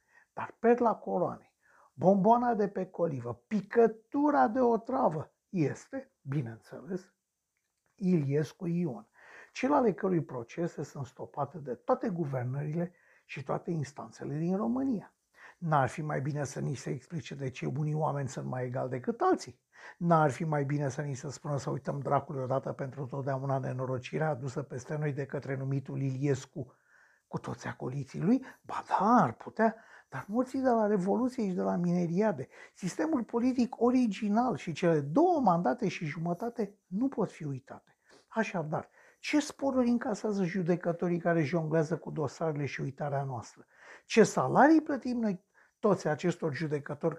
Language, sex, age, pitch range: Romanian, male, 60-79, 145-210 Hz